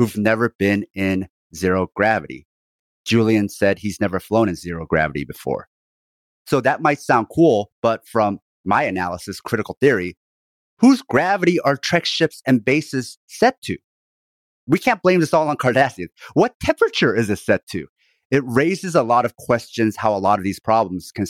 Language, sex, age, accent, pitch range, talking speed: English, male, 30-49, American, 95-130 Hz, 170 wpm